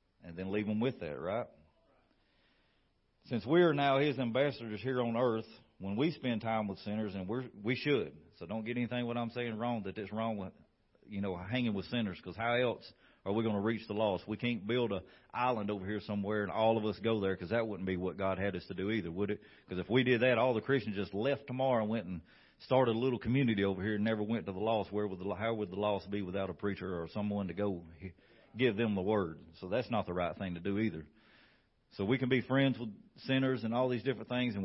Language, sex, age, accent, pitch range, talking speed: English, male, 40-59, American, 100-120 Hz, 255 wpm